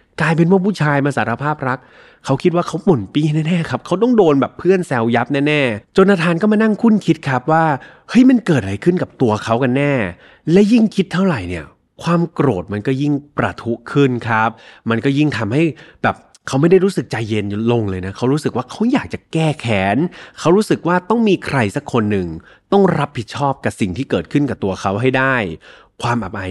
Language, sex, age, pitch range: Thai, male, 20-39, 105-160 Hz